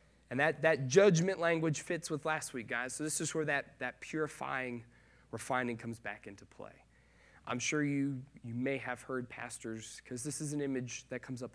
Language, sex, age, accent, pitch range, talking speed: English, male, 30-49, American, 120-155 Hz, 195 wpm